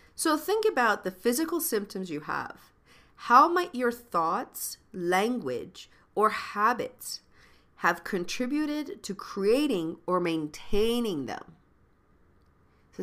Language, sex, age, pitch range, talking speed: English, female, 40-59, 165-230 Hz, 105 wpm